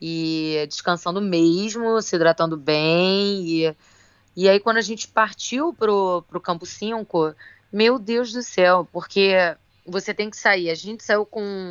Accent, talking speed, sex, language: Brazilian, 155 wpm, female, Portuguese